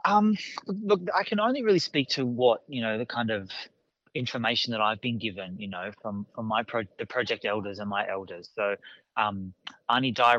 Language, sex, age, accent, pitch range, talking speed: English, male, 20-39, Australian, 105-120 Hz, 200 wpm